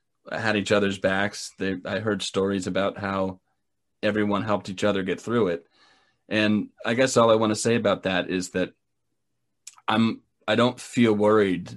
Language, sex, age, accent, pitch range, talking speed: English, male, 30-49, American, 90-105 Hz, 175 wpm